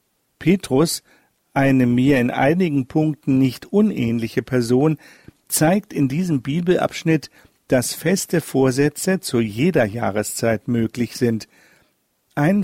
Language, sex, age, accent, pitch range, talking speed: German, male, 50-69, German, 125-160 Hz, 105 wpm